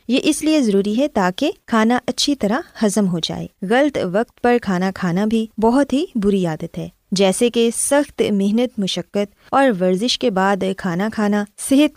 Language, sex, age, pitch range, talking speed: Urdu, female, 20-39, 190-260 Hz, 175 wpm